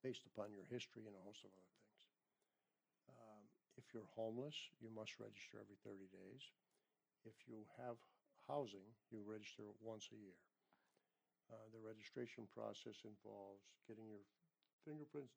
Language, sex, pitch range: English, male, 105-120 Hz